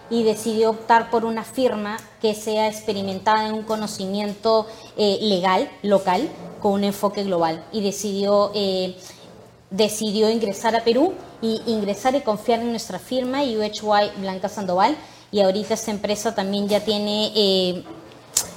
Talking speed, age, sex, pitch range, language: 145 wpm, 20-39, female, 205-225 Hz, Spanish